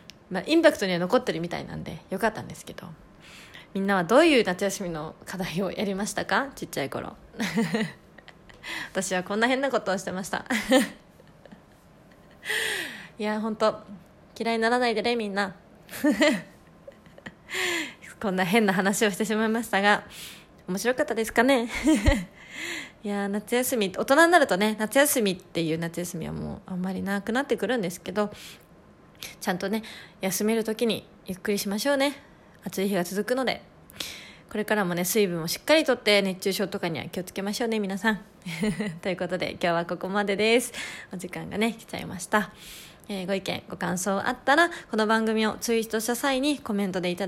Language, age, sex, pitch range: Japanese, 20-39, female, 190-245 Hz